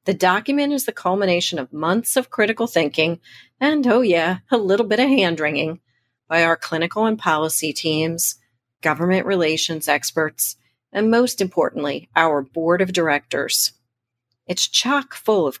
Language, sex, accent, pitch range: English, female, American, 140-200 Hz